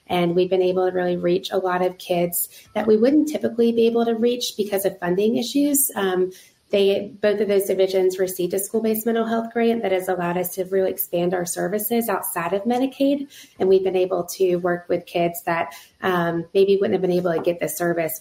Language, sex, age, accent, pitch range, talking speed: English, female, 20-39, American, 180-220 Hz, 220 wpm